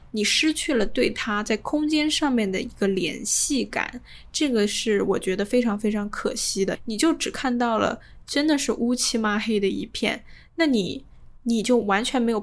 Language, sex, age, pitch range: Chinese, female, 10-29, 195-240 Hz